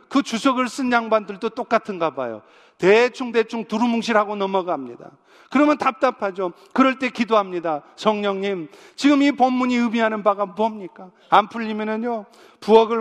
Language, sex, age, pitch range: Korean, male, 40-59, 170-255 Hz